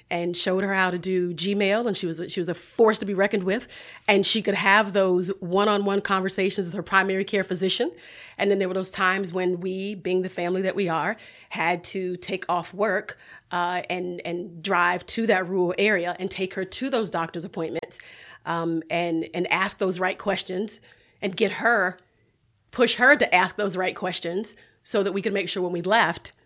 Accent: American